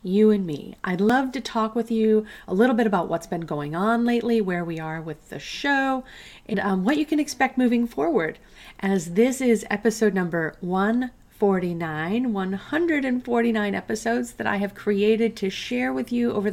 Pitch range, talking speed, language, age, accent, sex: 180-230 Hz, 180 wpm, English, 40-59, American, female